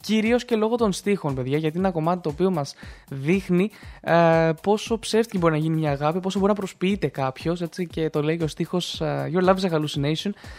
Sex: male